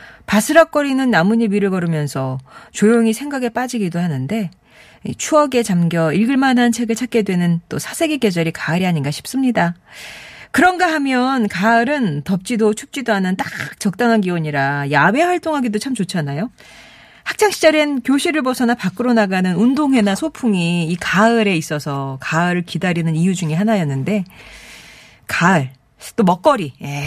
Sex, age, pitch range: female, 40-59, 170-245 Hz